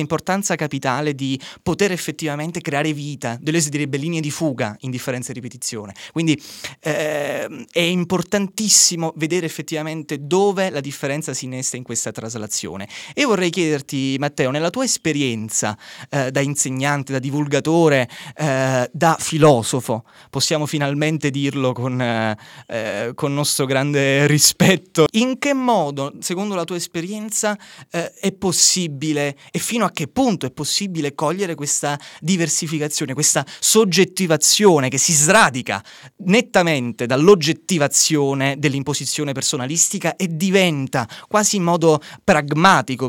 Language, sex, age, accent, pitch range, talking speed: Italian, male, 20-39, native, 135-170 Hz, 125 wpm